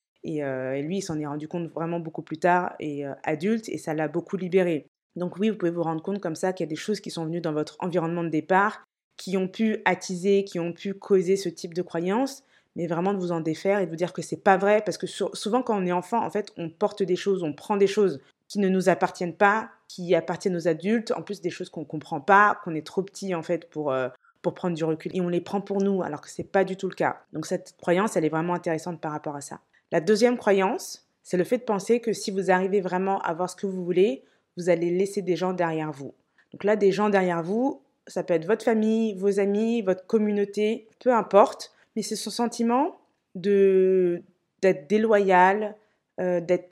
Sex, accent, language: female, French, French